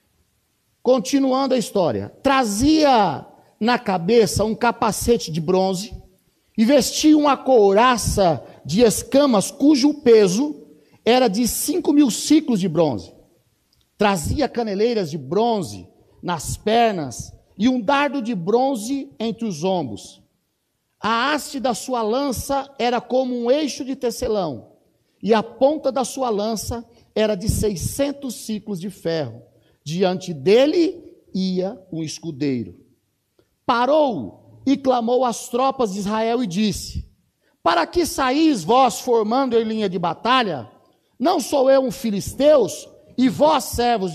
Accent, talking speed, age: Brazilian, 125 wpm, 50-69